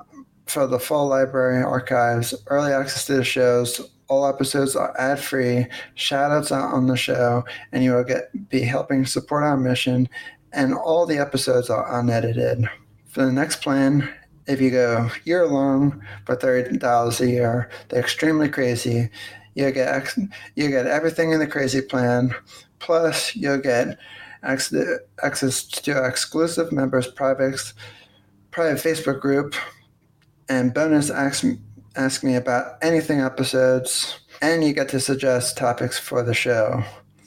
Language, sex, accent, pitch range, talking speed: English, male, American, 125-145 Hz, 140 wpm